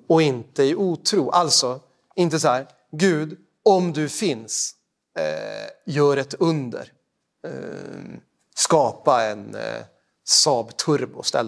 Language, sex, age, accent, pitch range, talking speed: Swedish, male, 30-49, native, 140-175 Hz, 115 wpm